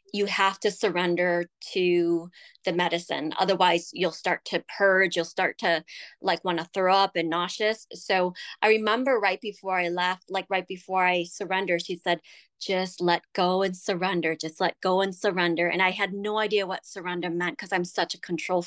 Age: 20-39